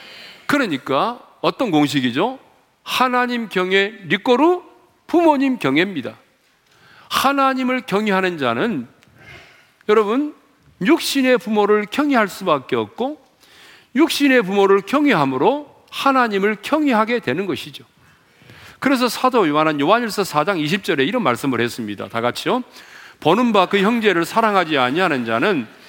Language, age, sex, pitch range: Korean, 40-59, male, 170-265 Hz